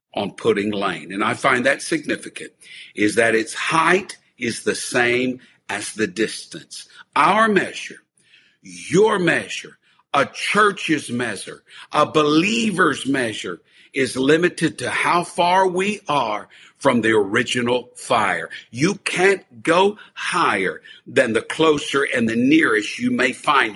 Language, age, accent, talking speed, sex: English, 50-69, American, 130 wpm, male